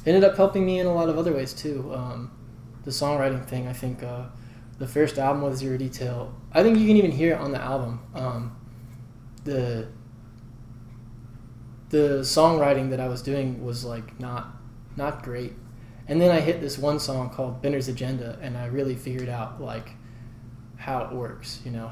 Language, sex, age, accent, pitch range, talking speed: English, male, 20-39, American, 120-140 Hz, 185 wpm